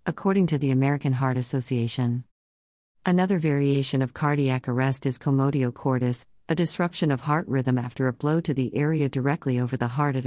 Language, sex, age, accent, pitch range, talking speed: English, female, 50-69, American, 125-150 Hz, 175 wpm